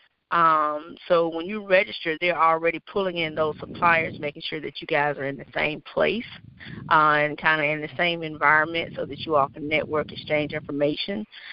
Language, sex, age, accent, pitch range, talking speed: English, female, 30-49, American, 155-180 Hz, 185 wpm